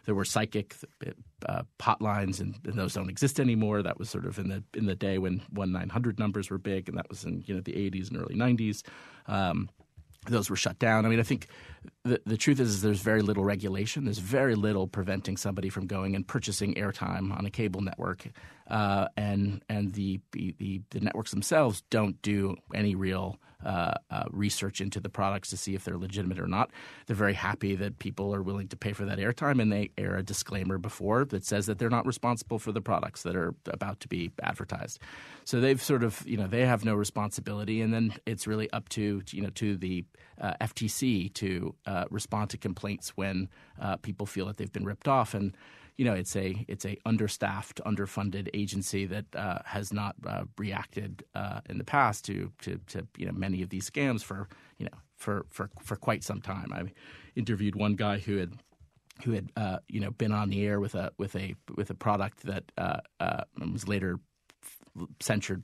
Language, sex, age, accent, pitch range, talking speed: English, male, 40-59, American, 95-110 Hz, 210 wpm